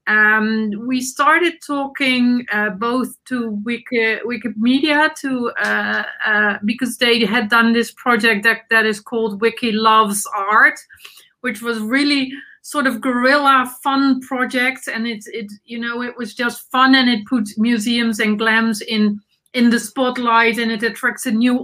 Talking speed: 160 wpm